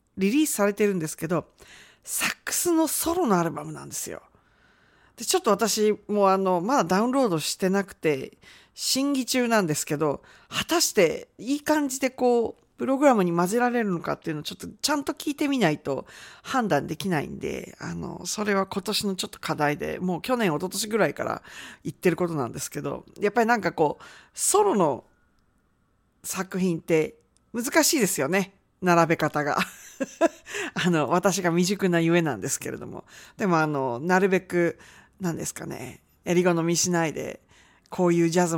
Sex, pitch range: female, 170-260 Hz